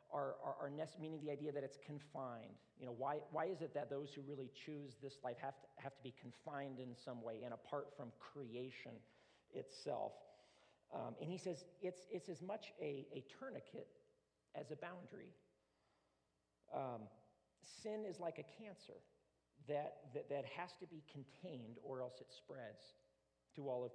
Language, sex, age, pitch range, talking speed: English, male, 50-69, 130-180 Hz, 175 wpm